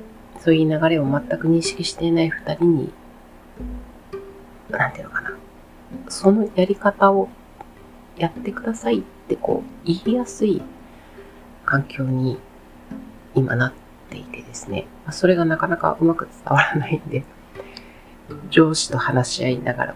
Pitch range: 135-205 Hz